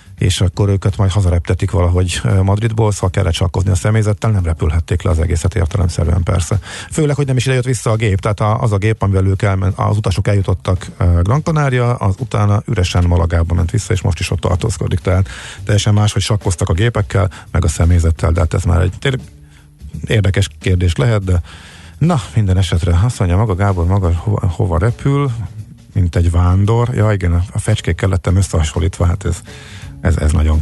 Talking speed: 190 wpm